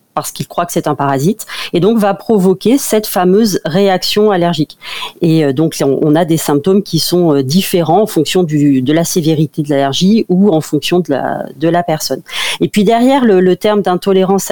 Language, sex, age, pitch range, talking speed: French, female, 40-59, 160-210 Hz, 195 wpm